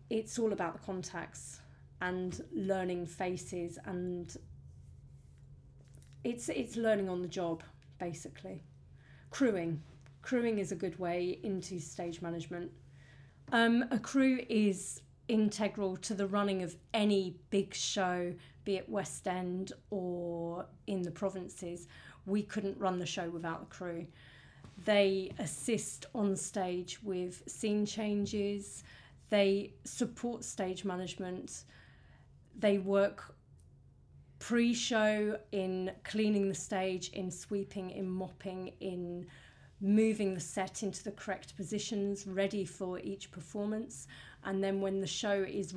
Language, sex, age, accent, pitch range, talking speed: English, female, 30-49, British, 180-205 Hz, 120 wpm